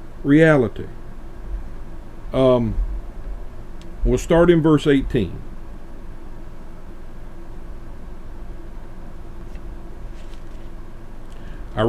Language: English